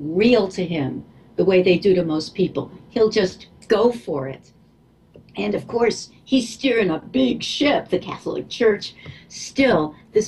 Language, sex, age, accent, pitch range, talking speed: English, female, 60-79, American, 165-225 Hz, 165 wpm